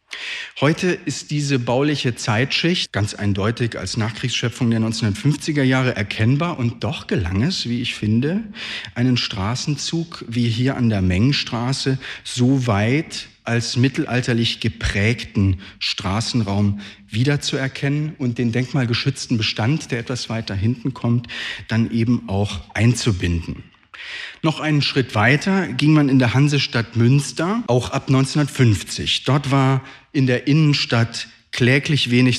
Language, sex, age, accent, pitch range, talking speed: German, male, 40-59, German, 110-135 Hz, 125 wpm